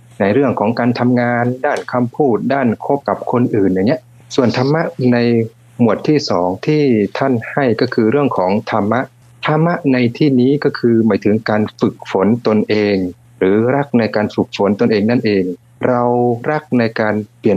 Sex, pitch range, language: male, 105-130 Hz, Thai